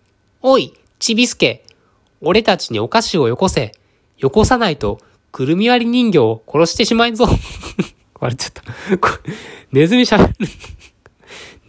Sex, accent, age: male, native, 20-39